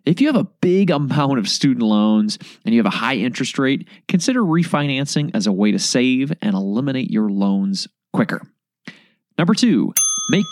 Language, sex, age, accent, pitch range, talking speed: English, male, 30-49, American, 155-210 Hz, 175 wpm